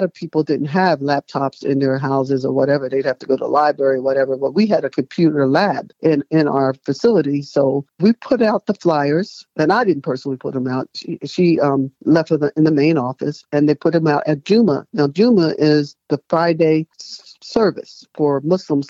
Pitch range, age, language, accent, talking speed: 140-175 Hz, 50-69, English, American, 210 wpm